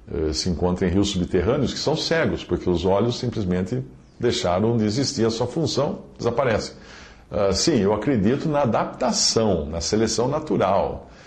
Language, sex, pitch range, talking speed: Portuguese, male, 90-125 Hz, 150 wpm